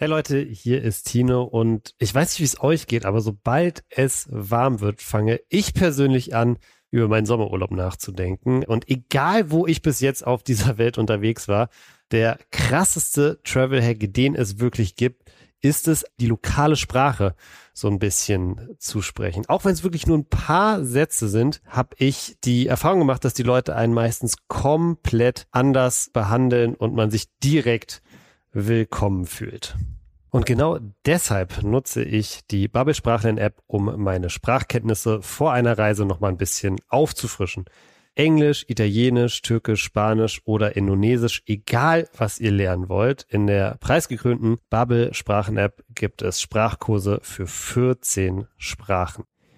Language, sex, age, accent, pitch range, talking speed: German, male, 40-59, German, 105-130 Hz, 150 wpm